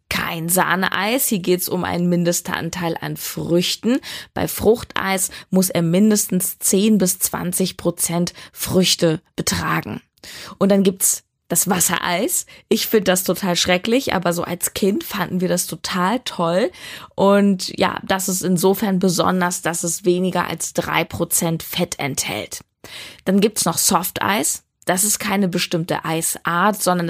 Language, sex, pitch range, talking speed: German, female, 170-195 Hz, 145 wpm